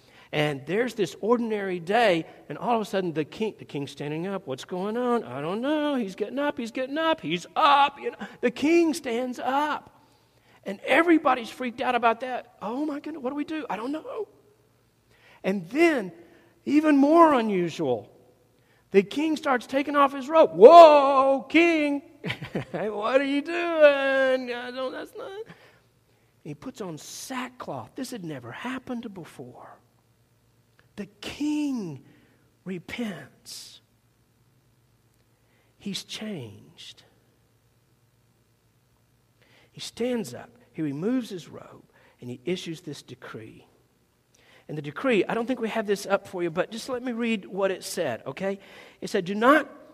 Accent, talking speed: American, 150 wpm